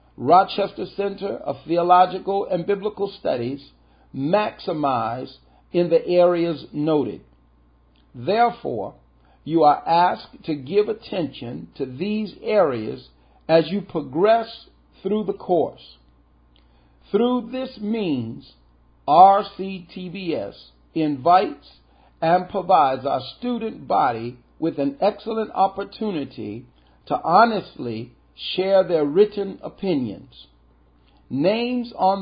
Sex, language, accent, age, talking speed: male, English, American, 50-69, 95 wpm